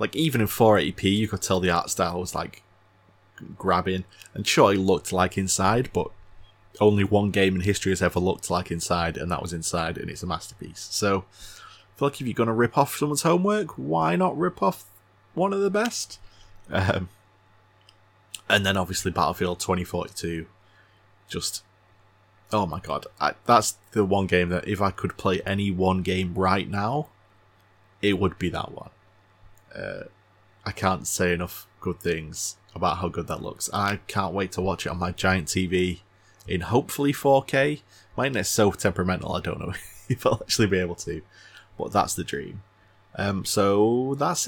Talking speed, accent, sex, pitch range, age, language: 175 wpm, British, male, 95-110 Hz, 20-39, English